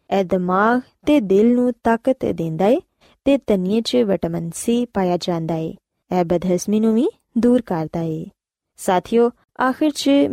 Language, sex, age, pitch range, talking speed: Punjabi, female, 20-39, 185-255 Hz, 145 wpm